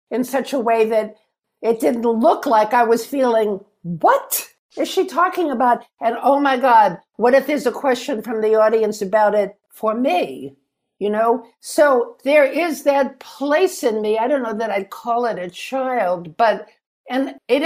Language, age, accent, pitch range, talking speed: English, 60-79, American, 195-260 Hz, 185 wpm